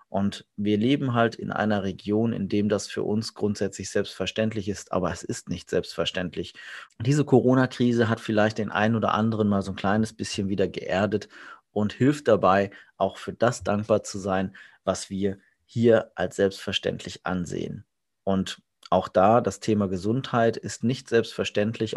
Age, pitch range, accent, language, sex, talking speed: 30-49, 100-115 Hz, German, German, male, 160 wpm